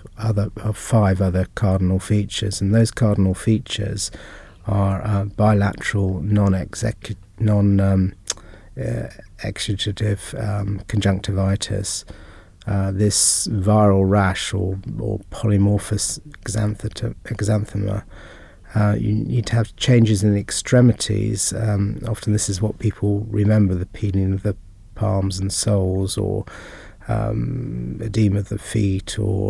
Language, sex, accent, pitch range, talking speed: English, male, British, 100-110 Hz, 120 wpm